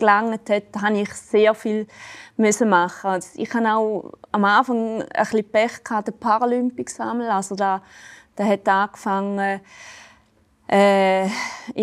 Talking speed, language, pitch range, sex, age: 125 wpm, German, 190-220 Hz, female, 20-39